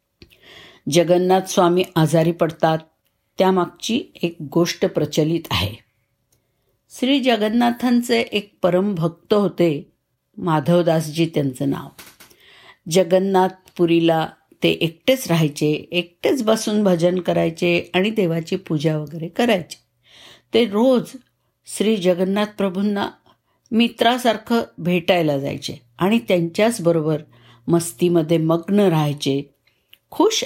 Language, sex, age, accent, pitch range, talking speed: Marathi, female, 60-79, native, 160-205 Hz, 85 wpm